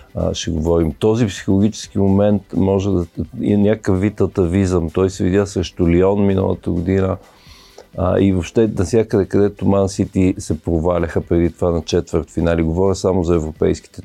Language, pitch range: Bulgarian, 90-105 Hz